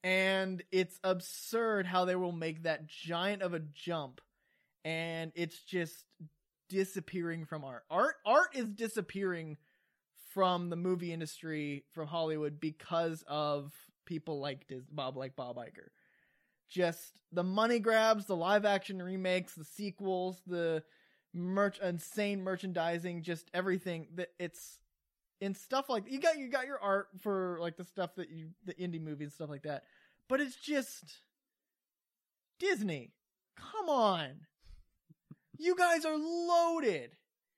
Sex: male